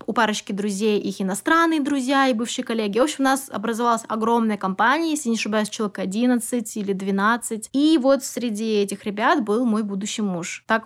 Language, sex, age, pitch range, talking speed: Russian, female, 20-39, 210-255 Hz, 180 wpm